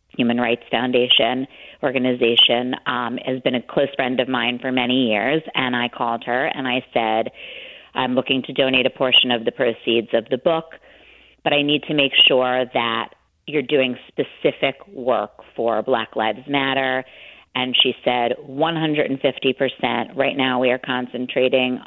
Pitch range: 120-135 Hz